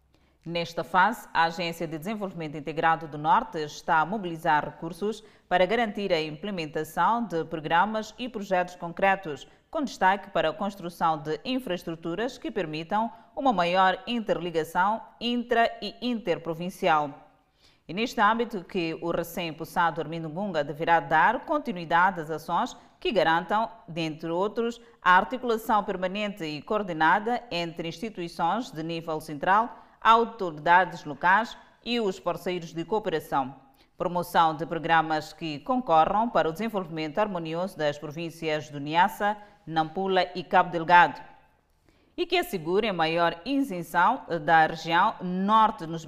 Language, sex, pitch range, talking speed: Portuguese, female, 160-205 Hz, 130 wpm